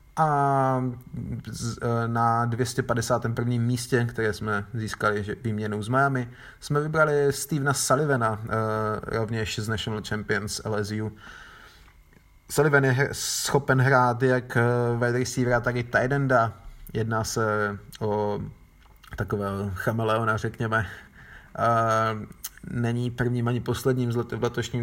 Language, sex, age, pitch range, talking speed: Slovak, male, 30-49, 105-120 Hz, 100 wpm